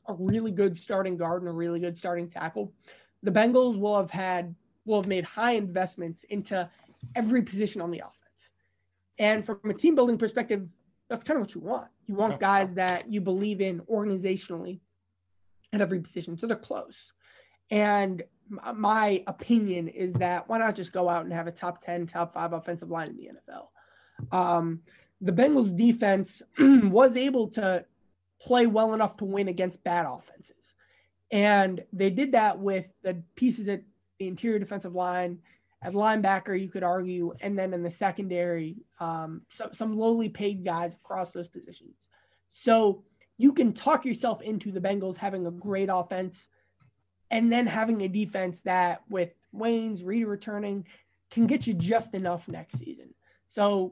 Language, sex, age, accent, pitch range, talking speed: English, male, 20-39, American, 175-220 Hz, 170 wpm